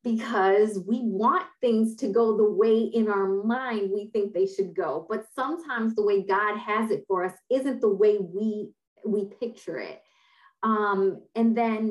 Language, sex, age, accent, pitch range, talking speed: English, female, 20-39, American, 195-240 Hz, 175 wpm